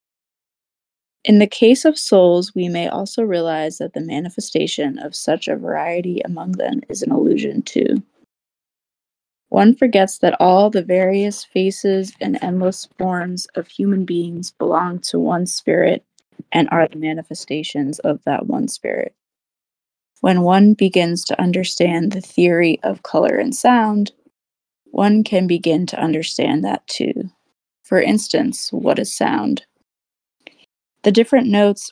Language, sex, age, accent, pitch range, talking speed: English, female, 20-39, American, 175-210 Hz, 135 wpm